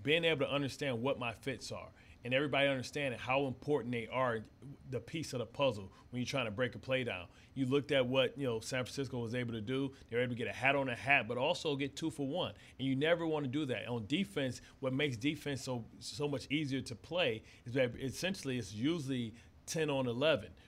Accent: American